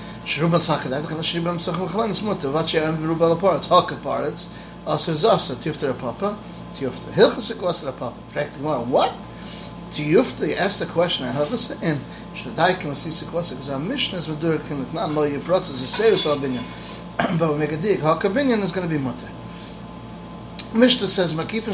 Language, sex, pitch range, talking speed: English, male, 145-175 Hz, 70 wpm